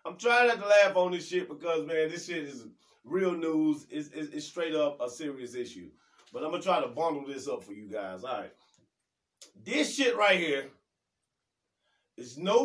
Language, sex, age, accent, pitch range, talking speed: English, male, 30-49, American, 155-195 Hz, 205 wpm